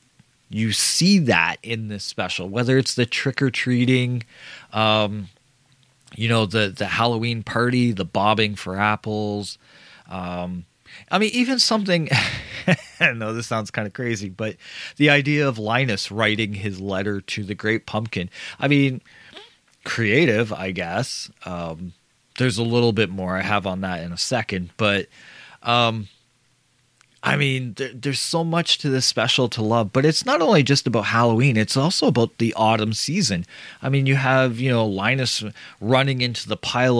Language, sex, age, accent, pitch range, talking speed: English, male, 30-49, American, 105-135 Hz, 160 wpm